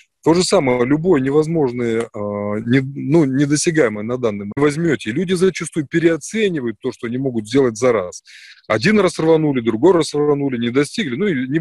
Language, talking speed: Russian, 165 wpm